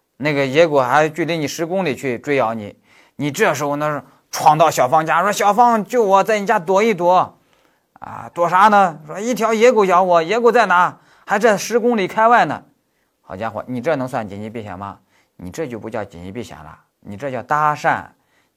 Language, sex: Chinese, male